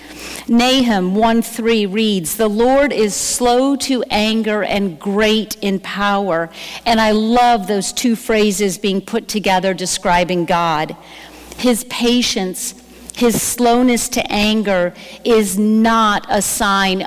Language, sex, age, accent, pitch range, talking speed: English, female, 50-69, American, 185-230 Hz, 120 wpm